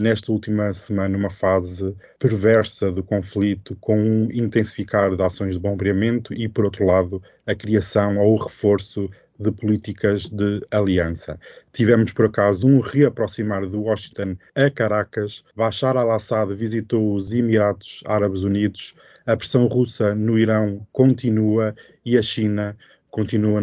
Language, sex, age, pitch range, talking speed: Portuguese, male, 20-39, 100-115 Hz, 135 wpm